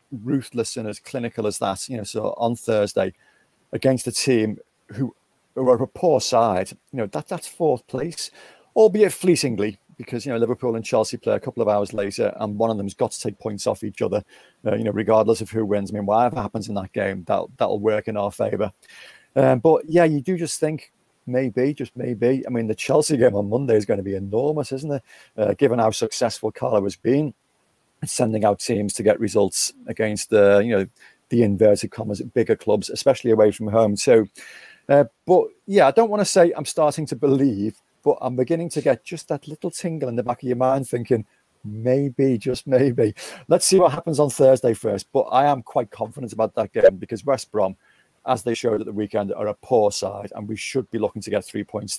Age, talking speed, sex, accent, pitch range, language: 40-59, 220 wpm, male, British, 105-140 Hz, English